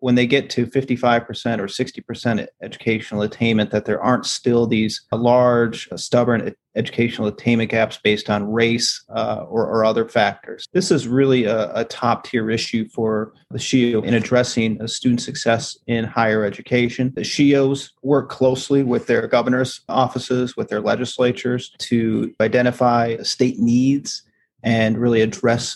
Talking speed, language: 145 wpm, English